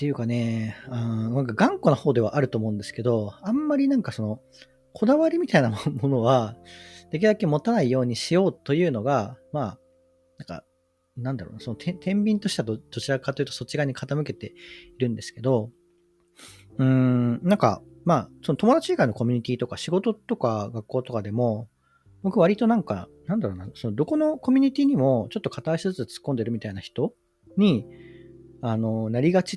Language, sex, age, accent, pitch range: Japanese, male, 40-59, native, 110-170 Hz